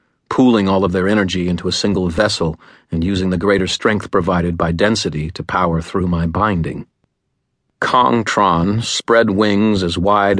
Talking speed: 155 wpm